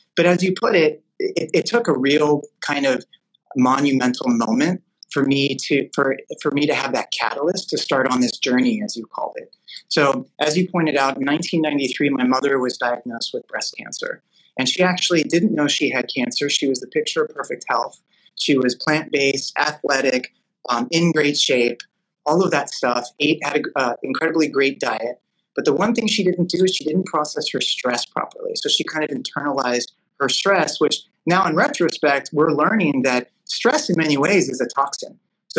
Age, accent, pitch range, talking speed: 30-49, American, 135-185 Hz, 195 wpm